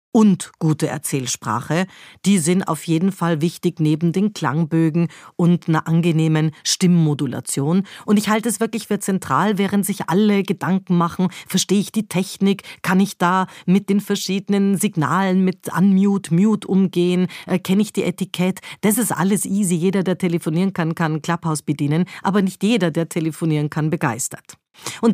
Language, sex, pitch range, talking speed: German, female, 165-200 Hz, 160 wpm